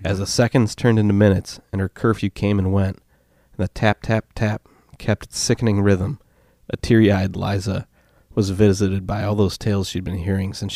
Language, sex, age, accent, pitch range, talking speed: English, male, 30-49, American, 95-105 Hz, 195 wpm